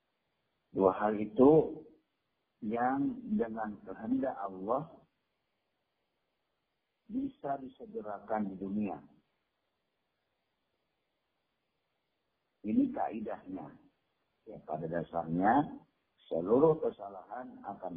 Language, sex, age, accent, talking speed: Indonesian, male, 50-69, native, 65 wpm